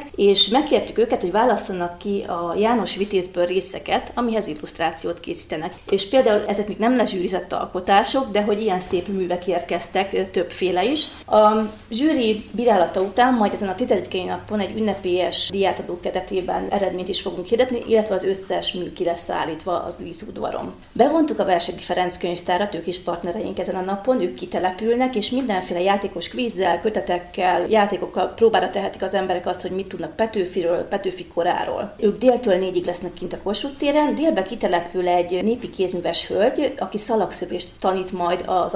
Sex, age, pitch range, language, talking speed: female, 30-49, 180-220 Hz, Hungarian, 155 wpm